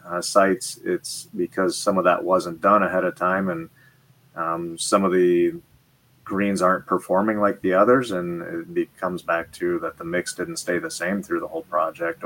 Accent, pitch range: American, 90-105 Hz